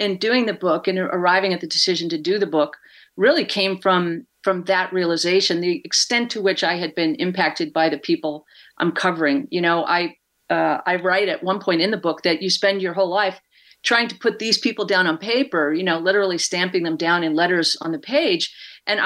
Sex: female